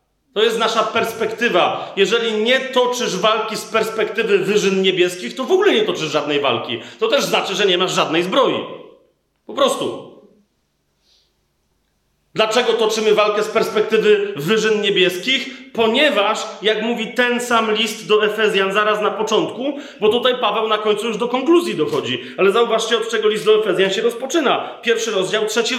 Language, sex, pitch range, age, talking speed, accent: Polish, male, 190-240 Hz, 30-49, 160 wpm, native